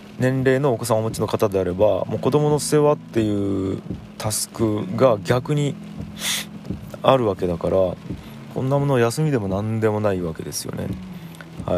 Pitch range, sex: 95-130 Hz, male